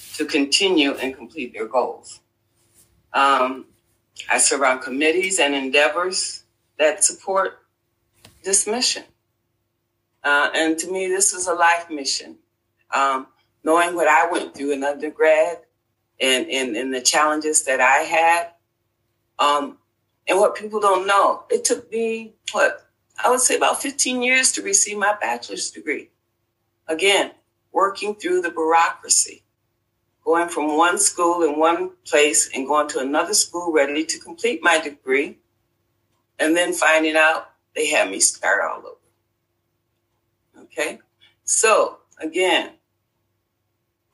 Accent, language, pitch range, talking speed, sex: American, English, 115-185 Hz, 135 wpm, female